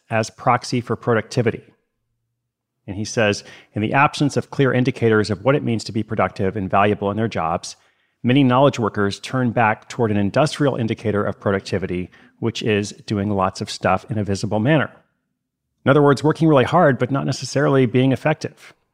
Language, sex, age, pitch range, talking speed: English, male, 40-59, 105-130 Hz, 180 wpm